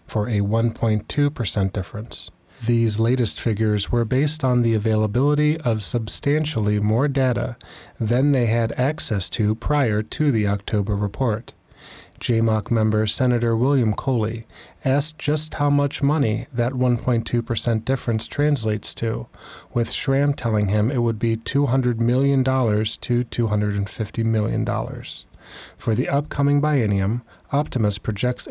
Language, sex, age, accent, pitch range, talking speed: English, male, 30-49, American, 110-130 Hz, 125 wpm